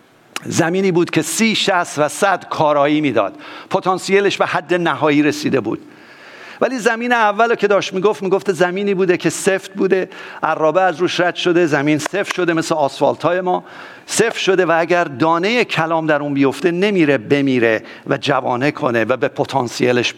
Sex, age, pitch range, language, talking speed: male, 50-69, 155-195 Hz, English, 165 wpm